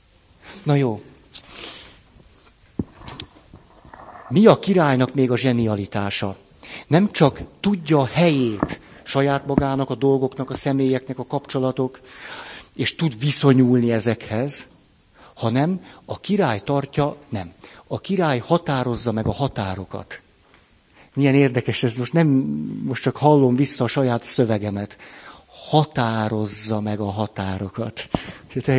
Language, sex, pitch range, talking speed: Hungarian, male, 115-145 Hz, 110 wpm